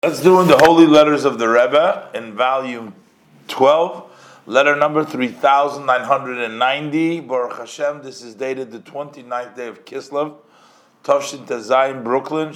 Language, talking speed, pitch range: English, 135 wpm, 125-160 Hz